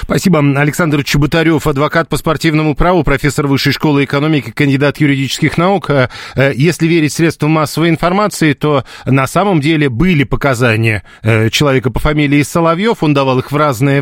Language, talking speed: Russian, 145 wpm